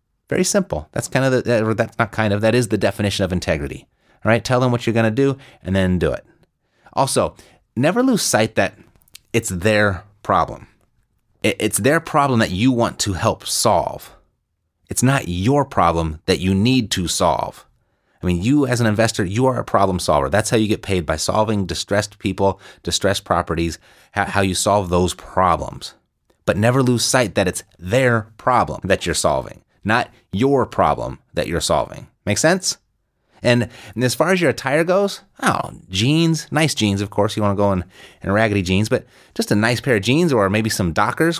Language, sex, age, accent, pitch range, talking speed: English, male, 30-49, American, 95-120 Hz, 195 wpm